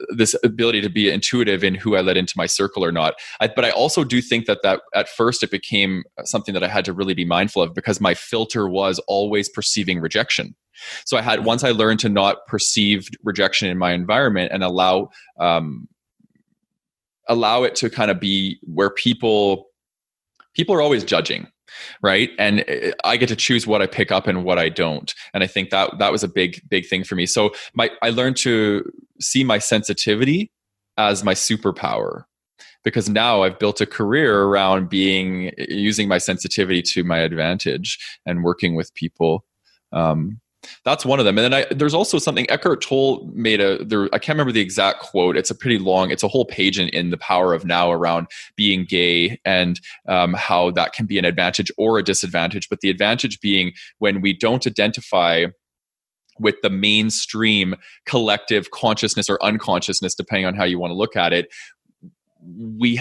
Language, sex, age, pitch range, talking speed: English, male, 20-39, 90-110 Hz, 190 wpm